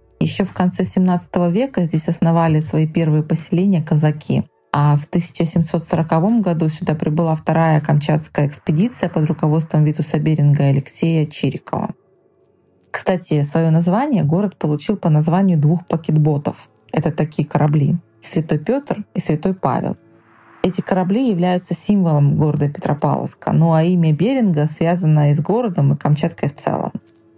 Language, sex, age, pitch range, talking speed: Russian, female, 20-39, 150-180 Hz, 135 wpm